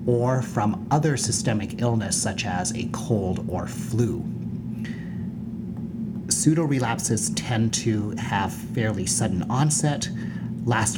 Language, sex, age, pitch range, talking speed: English, male, 30-49, 110-140 Hz, 110 wpm